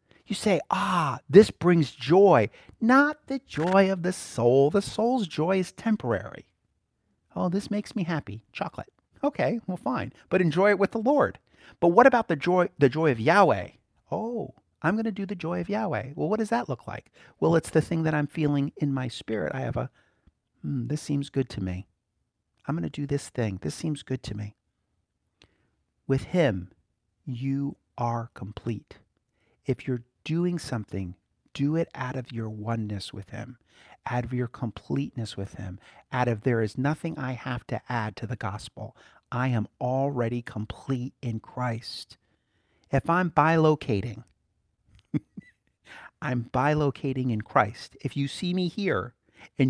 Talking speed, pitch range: 170 wpm, 115-165 Hz